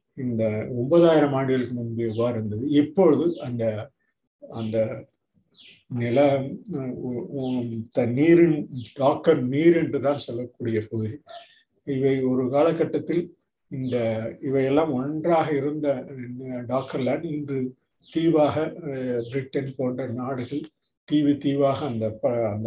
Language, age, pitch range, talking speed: Tamil, 50-69, 120-145 Hz, 90 wpm